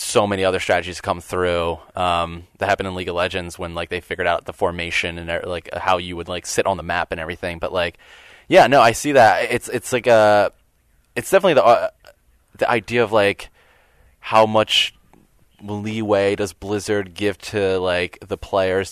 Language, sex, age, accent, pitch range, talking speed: English, male, 20-39, American, 85-105 Hz, 195 wpm